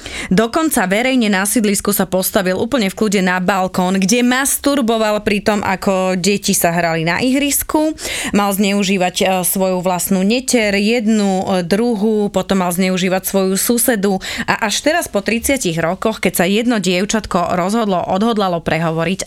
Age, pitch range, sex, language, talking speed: 20-39, 185-235 Hz, female, Slovak, 145 wpm